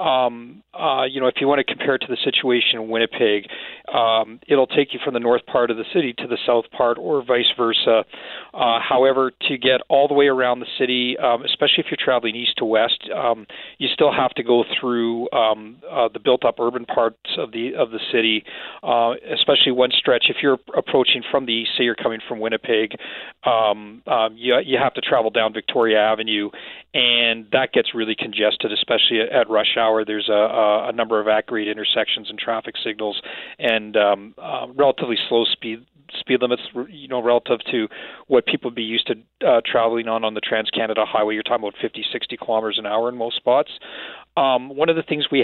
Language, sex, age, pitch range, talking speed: English, male, 40-59, 110-125 Hz, 205 wpm